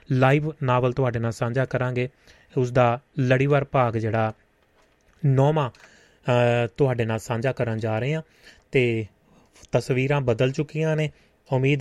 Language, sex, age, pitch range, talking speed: Punjabi, male, 30-49, 115-140 Hz, 125 wpm